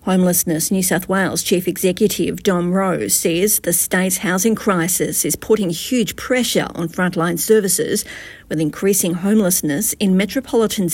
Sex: female